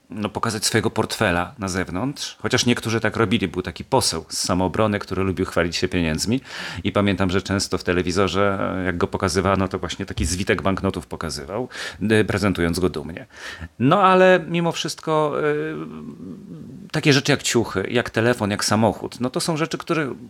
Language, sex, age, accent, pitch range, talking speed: Polish, male, 40-59, native, 95-140 Hz, 165 wpm